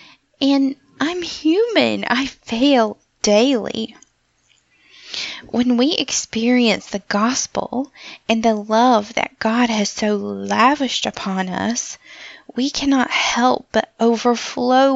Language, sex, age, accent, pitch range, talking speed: English, female, 10-29, American, 205-260 Hz, 105 wpm